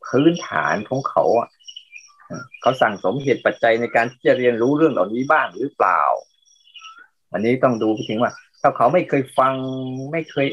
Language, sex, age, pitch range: Thai, male, 20-39, 130-165 Hz